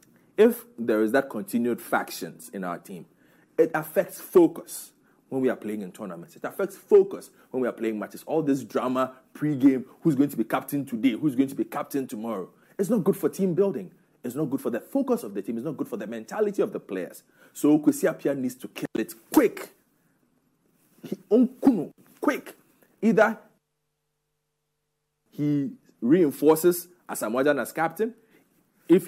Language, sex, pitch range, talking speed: English, male, 150-225 Hz, 170 wpm